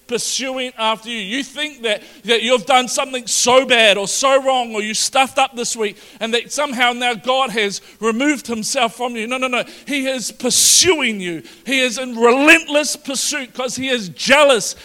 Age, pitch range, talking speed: 40-59, 215-275 Hz, 190 wpm